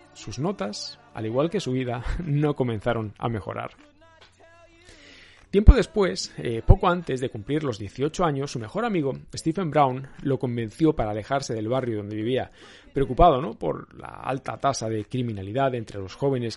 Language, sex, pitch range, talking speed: Spanish, male, 115-160 Hz, 160 wpm